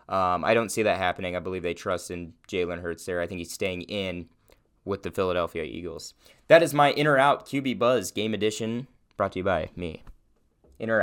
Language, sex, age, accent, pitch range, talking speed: English, male, 20-39, American, 90-115 Hz, 205 wpm